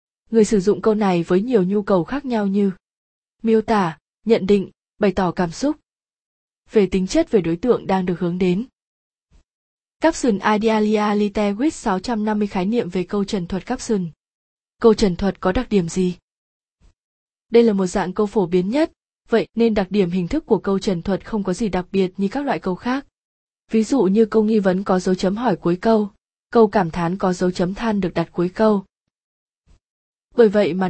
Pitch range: 185-225 Hz